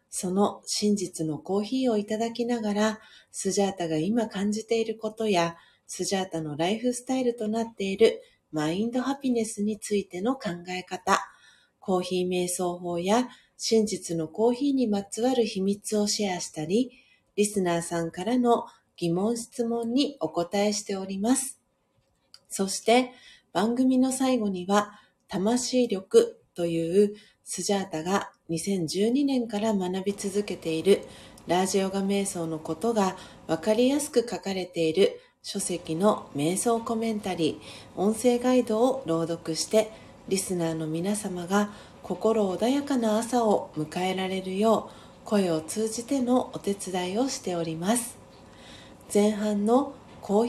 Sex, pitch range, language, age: female, 180-235 Hz, Japanese, 40-59